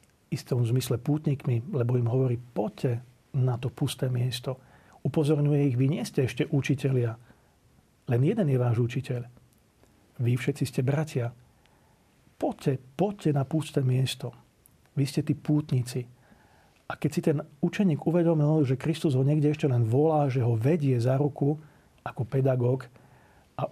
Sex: male